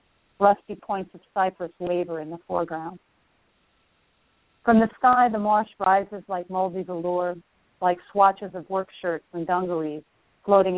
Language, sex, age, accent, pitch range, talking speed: English, female, 40-59, American, 170-195 Hz, 140 wpm